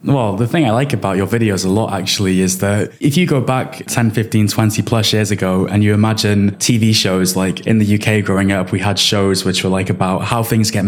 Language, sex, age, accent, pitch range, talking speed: English, male, 10-29, British, 100-115 Hz, 245 wpm